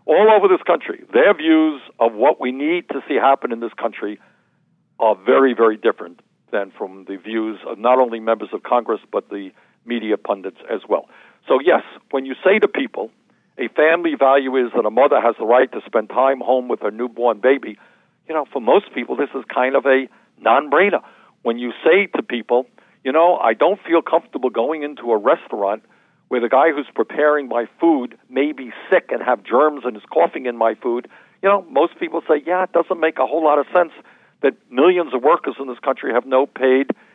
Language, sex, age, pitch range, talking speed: English, male, 60-79, 115-150 Hz, 210 wpm